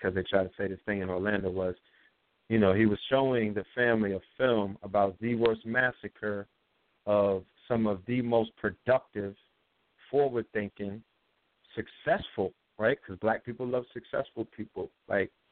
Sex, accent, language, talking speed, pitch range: male, American, English, 150 wpm, 100-110 Hz